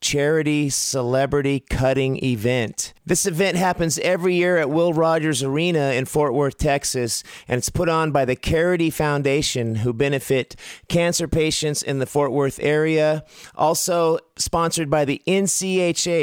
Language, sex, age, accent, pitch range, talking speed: English, male, 30-49, American, 135-165 Hz, 145 wpm